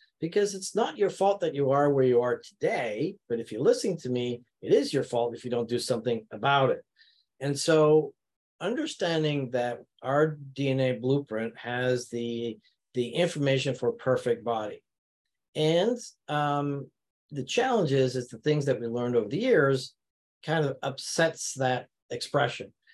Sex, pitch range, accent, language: male, 120-155 Hz, American, English